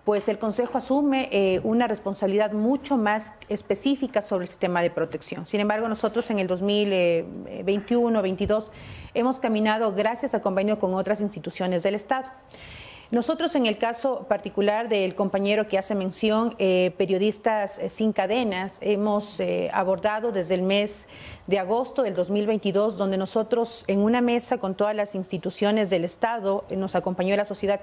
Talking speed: 155 wpm